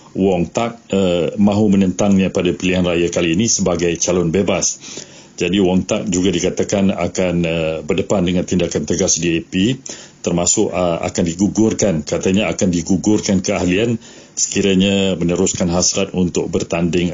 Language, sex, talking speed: Malay, male, 135 wpm